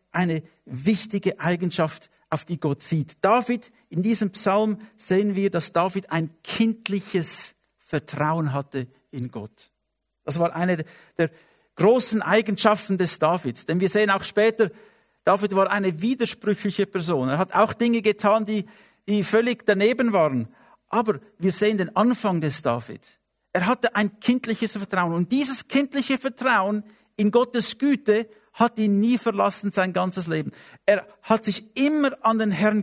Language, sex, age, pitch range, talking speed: English, male, 50-69, 160-215 Hz, 150 wpm